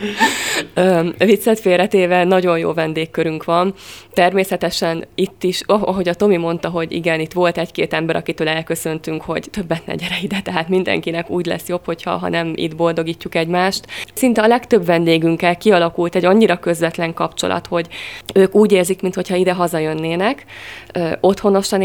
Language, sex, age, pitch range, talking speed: Hungarian, female, 20-39, 170-195 Hz, 145 wpm